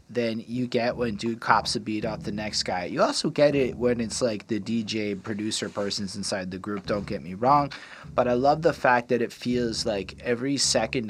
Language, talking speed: English, 220 wpm